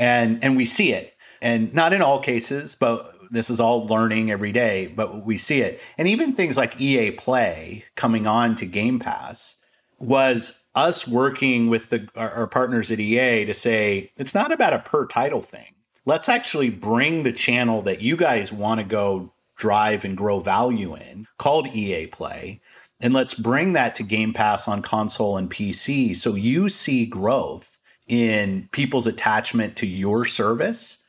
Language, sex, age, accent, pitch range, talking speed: English, male, 30-49, American, 110-130 Hz, 175 wpm